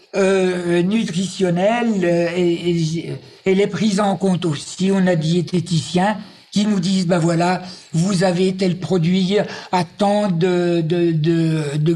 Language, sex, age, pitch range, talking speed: French, male, 60-79, 180-220 Hz, 155 wpm